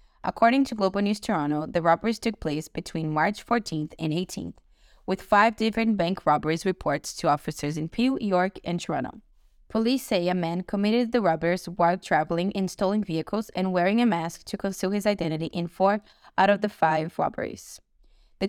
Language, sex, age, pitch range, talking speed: English, female, 20-39, 160-210 Hz, 180 wpm